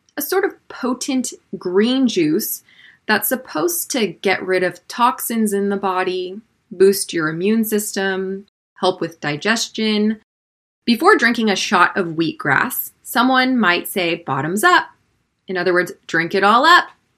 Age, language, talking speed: 20-39, English, 145 wpm